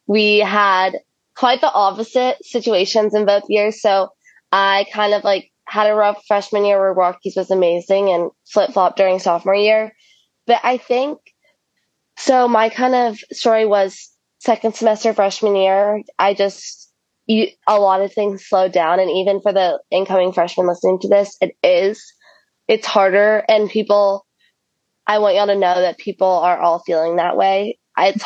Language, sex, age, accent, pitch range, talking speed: English, female, 20-39, American, 185-210 Hz, 165 wpm